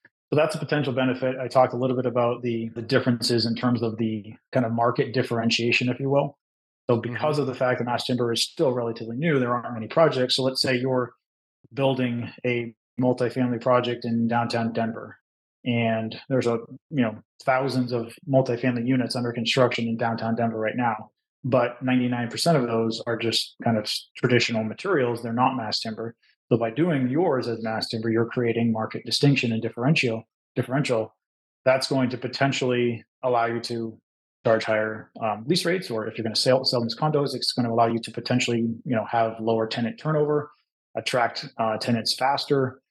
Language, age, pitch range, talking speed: English, 30-49, 115-130 Hz, 185 wpm